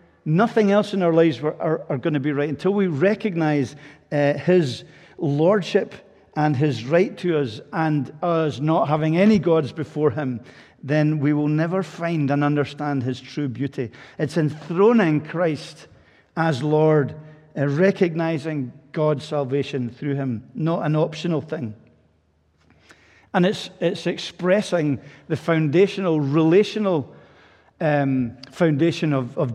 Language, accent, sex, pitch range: English, British, male, 135-165 Hz